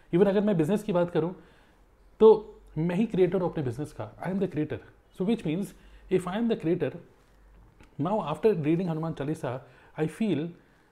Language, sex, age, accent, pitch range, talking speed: Hindi, male, 30-49, native, 145-190 Hz, 185 wpm